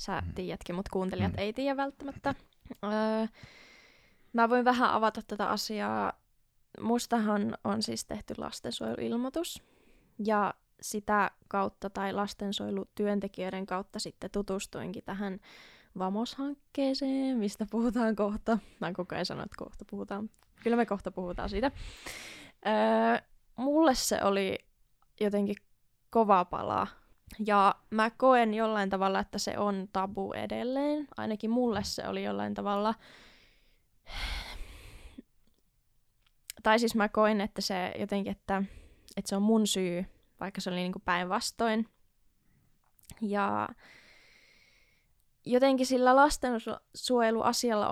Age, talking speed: 20-39, 110 wpm